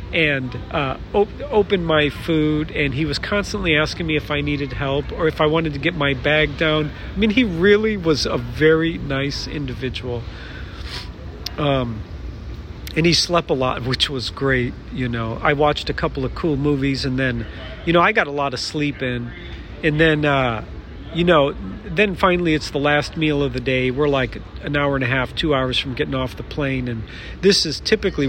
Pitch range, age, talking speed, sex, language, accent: 130-165 Hz, 40-59, 200 wpm, male, English, American